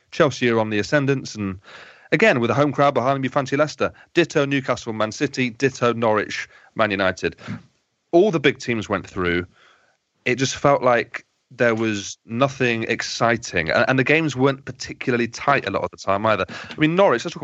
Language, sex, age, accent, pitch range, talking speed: English, male, 30-49, British, 100-140 Hz, 190 wpm